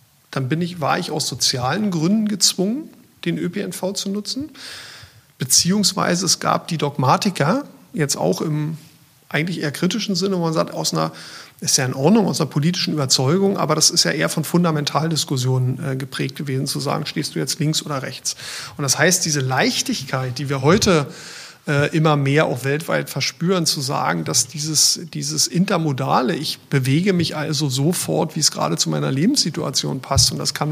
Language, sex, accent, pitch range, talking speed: German, male, German, 140-175 Hz, 170 wpm